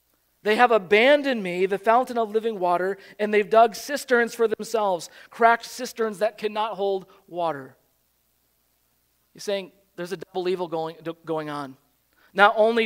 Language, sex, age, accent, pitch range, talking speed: English, male, 40-59, American, 155-205 Hz, 150 wpm